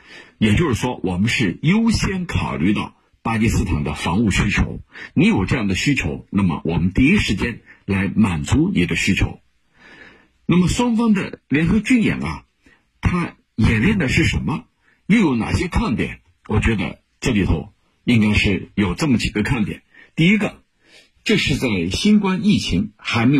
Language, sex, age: Chinese, male, 50-69